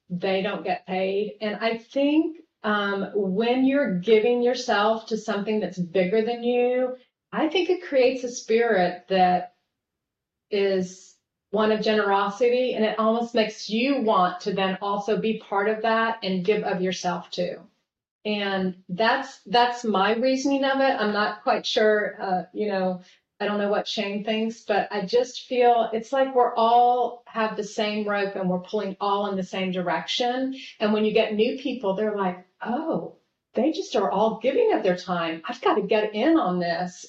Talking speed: 180 wpm